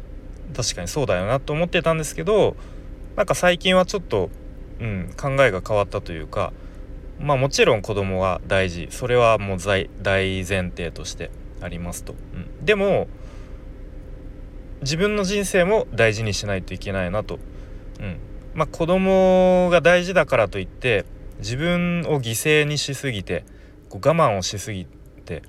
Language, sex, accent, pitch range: Japanese, male, native, 95-135 Hz